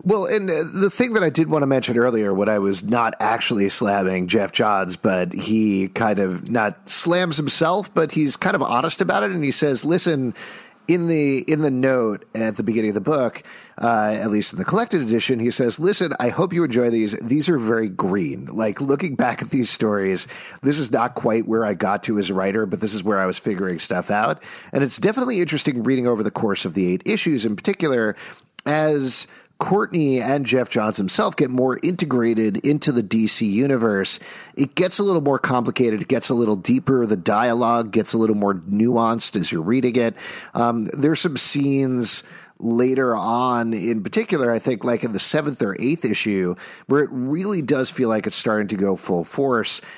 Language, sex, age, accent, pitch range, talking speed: English, male, 40-59, American, 110-150 Hz, 205 wpm